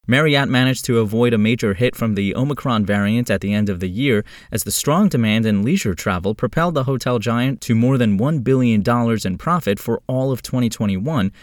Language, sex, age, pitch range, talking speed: English, male, 20-39, 100-125 Hz, 205 wpm